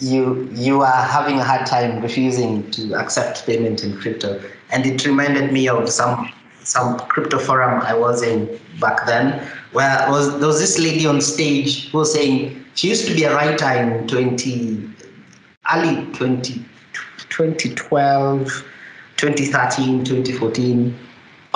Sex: male